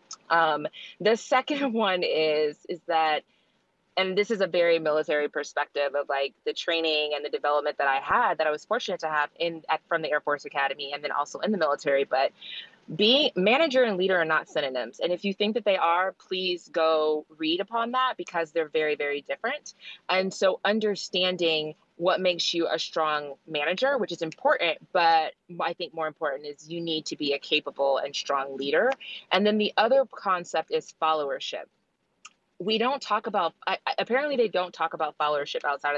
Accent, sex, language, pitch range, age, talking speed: American, female, English, 155-205 Hz, 20-39, 190 wpm